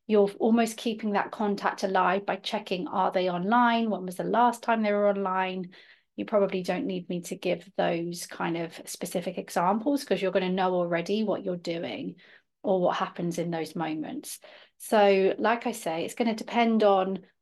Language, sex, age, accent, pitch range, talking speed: English, female, 30-49, British, 190-230 Hz, 190 wpm